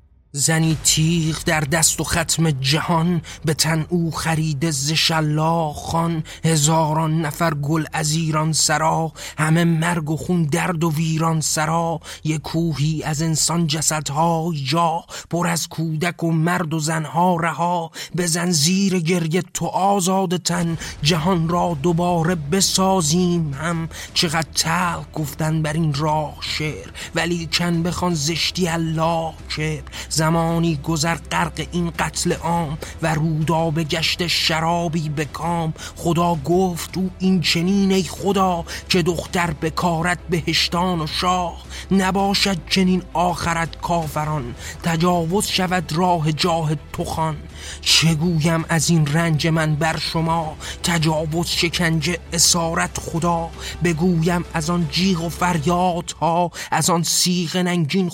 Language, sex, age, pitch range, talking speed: Persian, male, 30-49, 160-175 Hz, 125 wpm